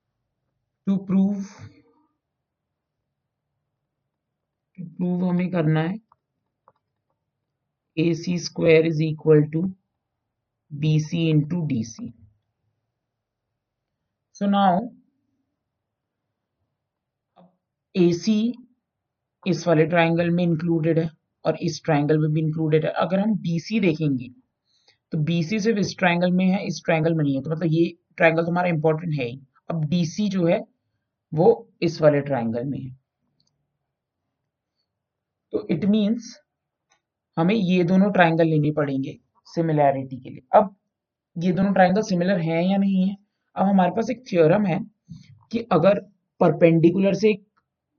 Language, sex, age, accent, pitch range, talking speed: Hindi, male, 50-69, native, 150-180 Hz, 105 wpm